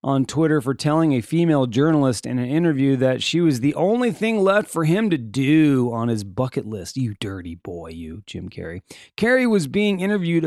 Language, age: English, 30-49